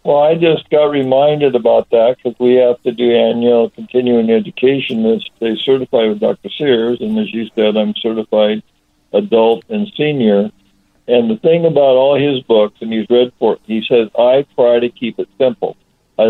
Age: 60-79